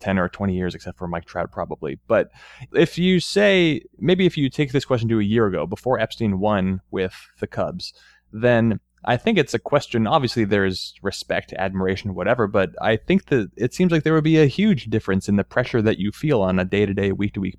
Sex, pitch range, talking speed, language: male, 95-120 Hz, 215 wpm, English